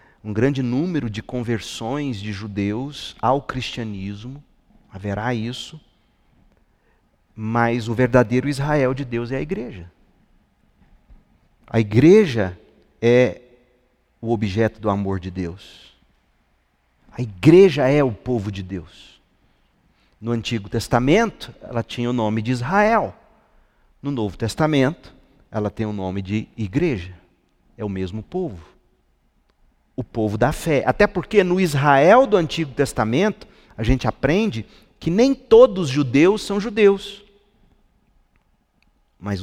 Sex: male